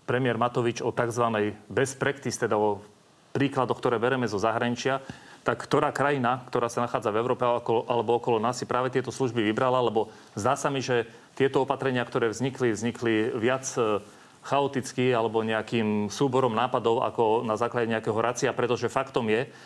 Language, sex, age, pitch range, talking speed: Slovak, male, 40-59, 115-130 Hz, 160 wpm